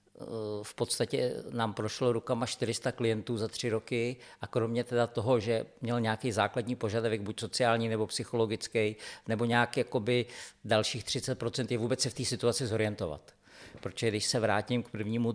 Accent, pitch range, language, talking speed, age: native, 110-130 Hz, Czech, 155 wpm, 50-69